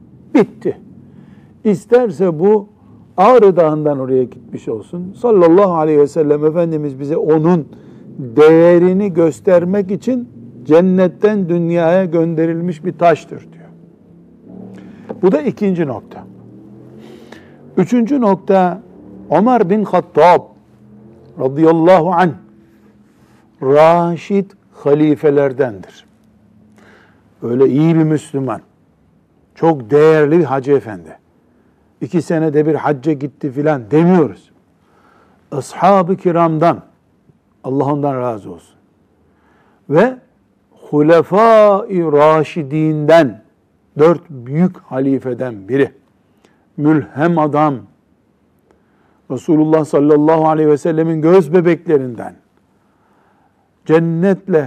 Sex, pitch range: male, 145-180 Hz